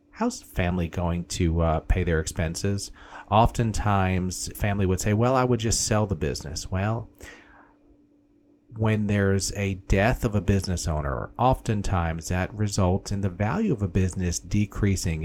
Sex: male